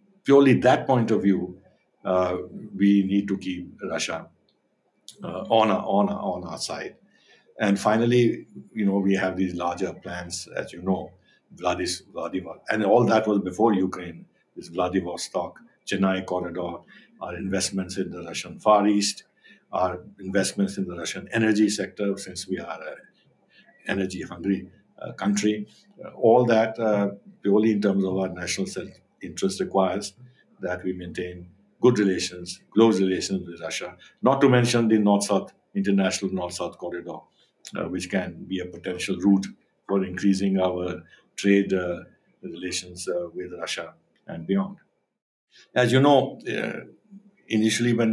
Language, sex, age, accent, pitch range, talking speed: English, male, 60-79, Indian, 90-105 Hz, 140 wpm